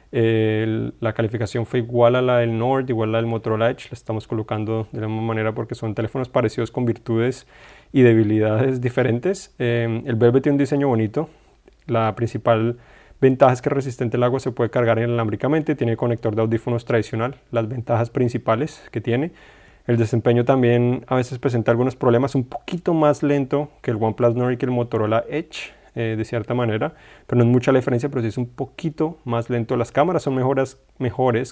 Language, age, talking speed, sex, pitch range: Spanish, 30-49, 195 wpm, male, 115-135 Hz